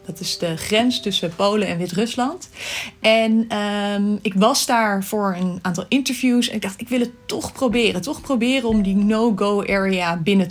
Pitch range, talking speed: 195-245 Hz, 175 wpm